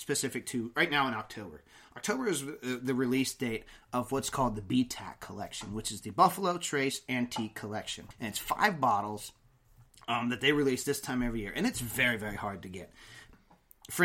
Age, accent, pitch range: 30-49, American, 110-140 Hz